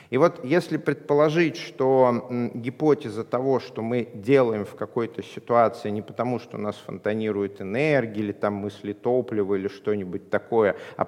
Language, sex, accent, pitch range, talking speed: Russian, male, native, 110-145 Hz, 145 wpm